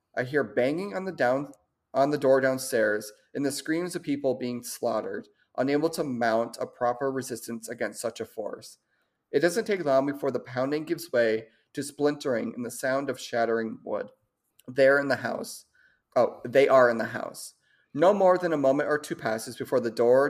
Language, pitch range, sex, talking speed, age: English, 120-155 Hz, male, 190 wpm, 30-49